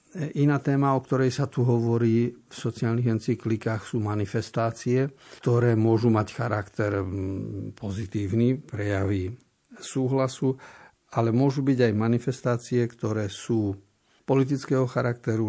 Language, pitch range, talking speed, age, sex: Slovak, 110-125 Hz, 110 wpm, 50-69, male